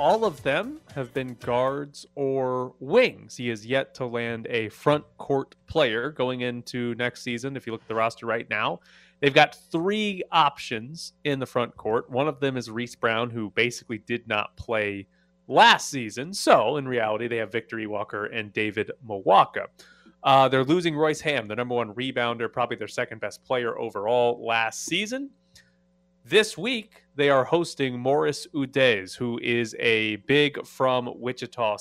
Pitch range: 120-150 Hz